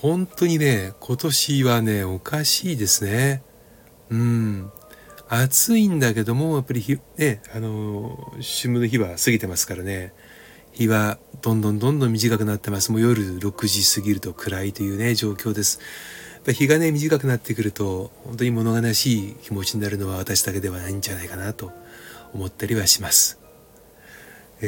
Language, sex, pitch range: Japanese, male, 100-125 Hz